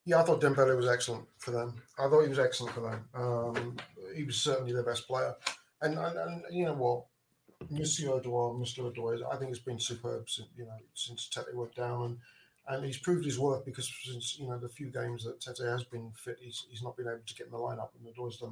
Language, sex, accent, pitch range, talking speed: English, male, British, 120-140 Hz, 245 wpm